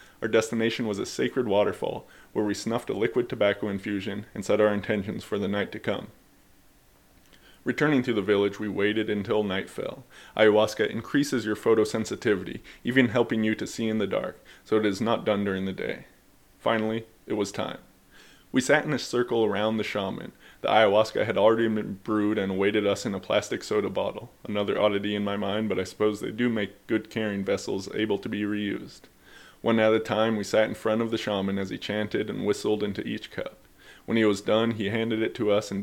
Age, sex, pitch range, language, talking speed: 20-39, male, 100-110 Hz, English, 210 wpm